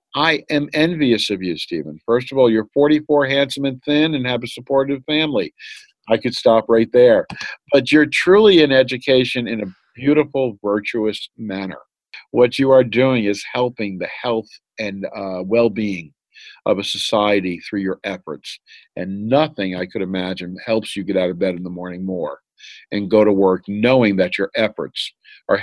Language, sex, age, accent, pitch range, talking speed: English, male, 50-69, American, 100-150 Hz, 175 wpm